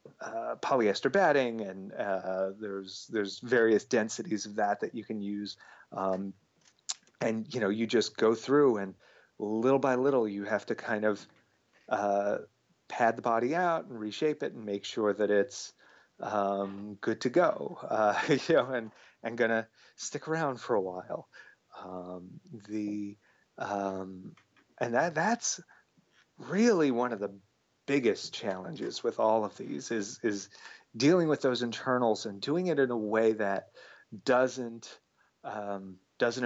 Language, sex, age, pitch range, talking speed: English, male, 30-49, 100-130 Hz, 150 wpm